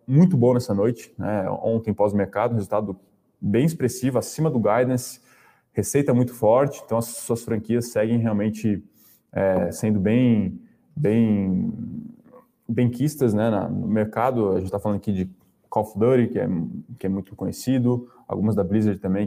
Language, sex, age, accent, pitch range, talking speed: Portuguese, male, 20-39, Brazilian, 100-125 Hz, 155 wpm